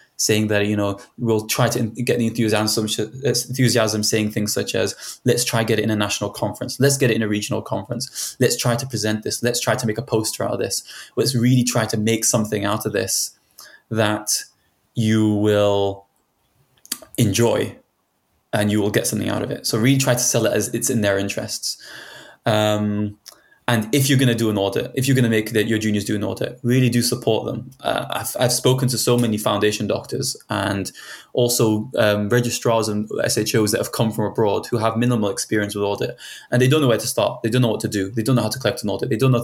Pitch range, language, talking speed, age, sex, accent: 105-125 Hz, English, 230 wpm, 20-39, male, British